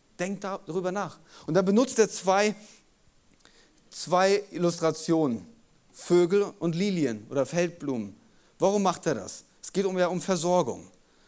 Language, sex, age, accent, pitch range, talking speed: German, male, 30-49, German, 135-180 Hz, 130 wpm